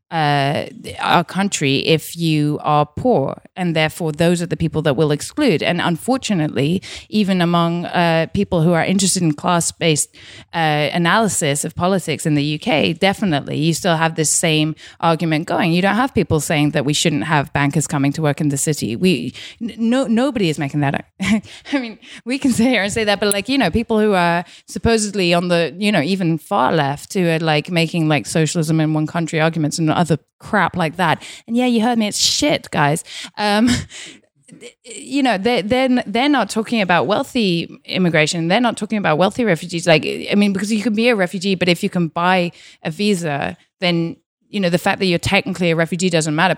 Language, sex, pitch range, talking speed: English, female, 155-205 Hz, 205 wpm